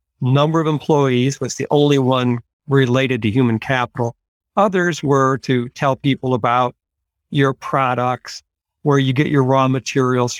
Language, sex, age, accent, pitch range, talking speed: English, male, 50-69, American, 120-150 Hz, 145 wpm